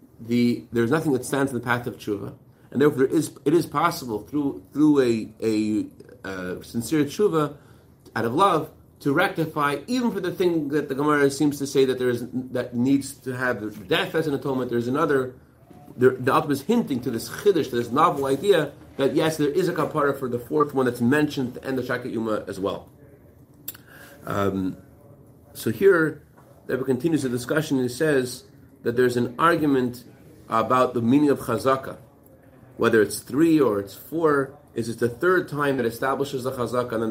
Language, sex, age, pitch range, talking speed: English, male, 40-59, 120-145 Hz, 195 wpm